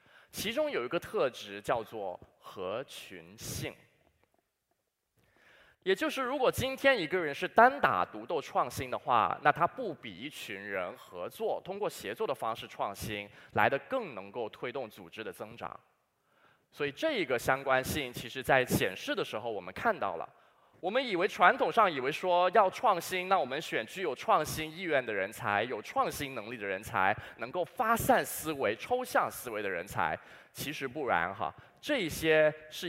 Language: Chinese